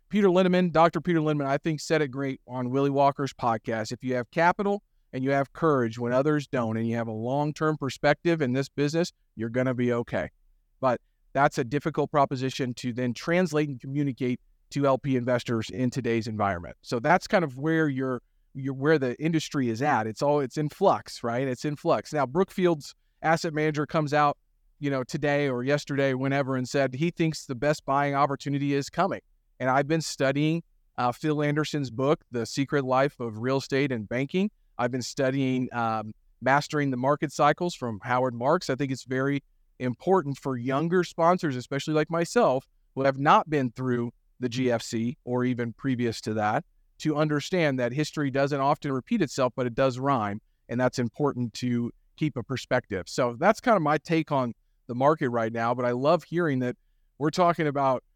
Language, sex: English, male